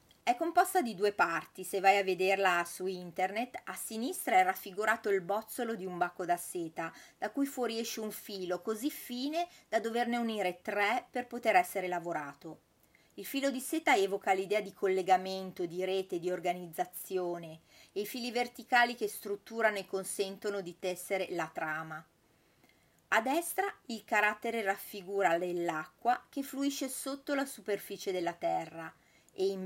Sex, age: female, 30-49